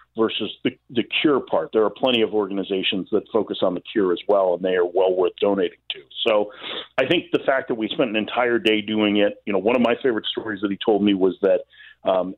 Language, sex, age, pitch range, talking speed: English, male, 40-59, 95-110 Hz, 245 wpm